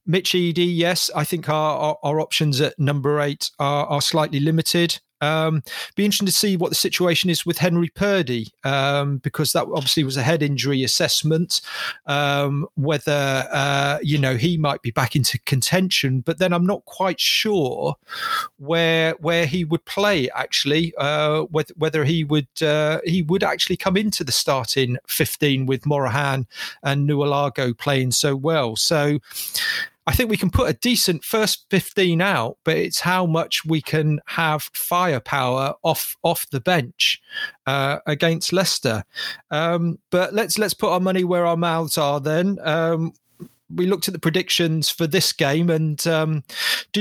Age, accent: 40-59, British